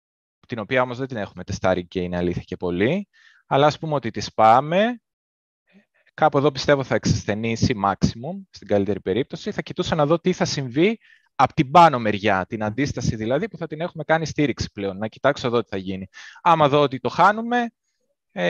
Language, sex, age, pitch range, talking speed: Greek, male, 20-39, 110-155 Hz, 190 wpm